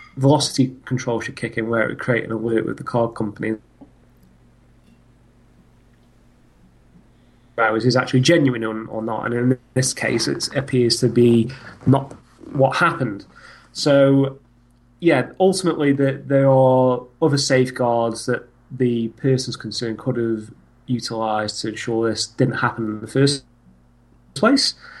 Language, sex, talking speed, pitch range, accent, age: English, male, 130 wpm, 115-135 Hz, British, 30-49